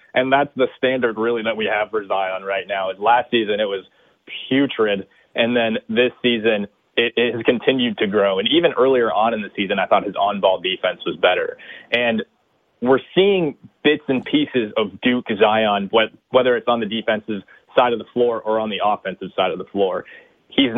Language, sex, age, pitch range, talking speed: English, male, 20-39, 110-130 Hz, 195 wpm